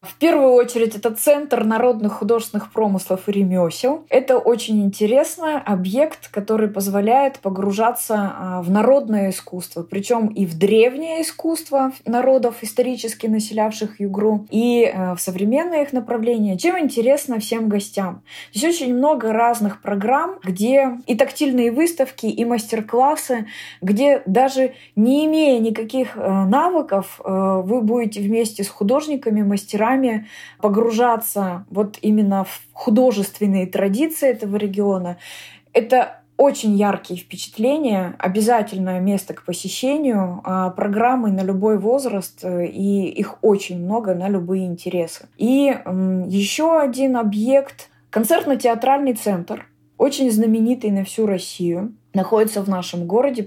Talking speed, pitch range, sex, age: 115 wpm, 195-250 Hz, female, 20-39